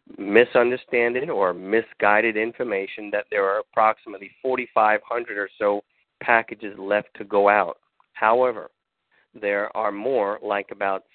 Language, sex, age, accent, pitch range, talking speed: English, male, 40-59, American, 100-115 Hz, 120 wpm